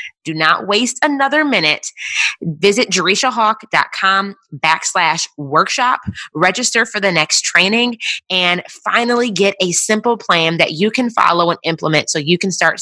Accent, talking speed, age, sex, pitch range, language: American, 140 wpm, 20-39, female, 155-205 Hz, English